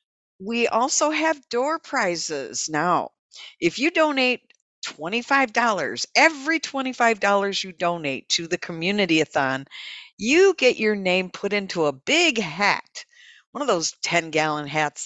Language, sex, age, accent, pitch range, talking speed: English, female, 50-69, American, 155-245 Hz, 130 wpm